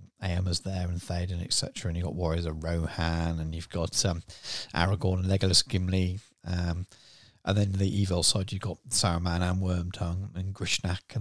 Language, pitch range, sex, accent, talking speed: English, 90-115 Hz, male, British, 175 wpm